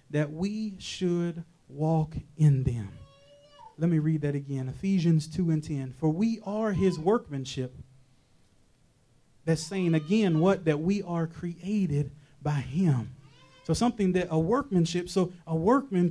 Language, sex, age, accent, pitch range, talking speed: English, male, 30-49, American, 150-195 Hz, 140 wpm